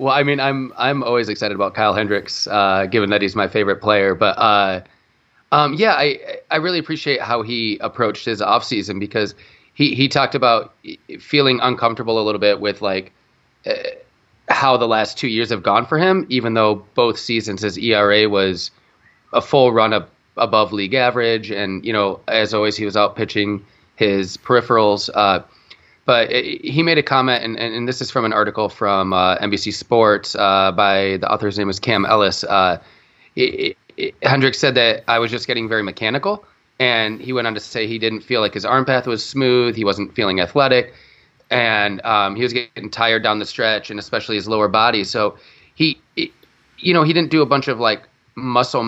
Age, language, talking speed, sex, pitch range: 30-49, English, 195 wpm, male, 105-130 Hz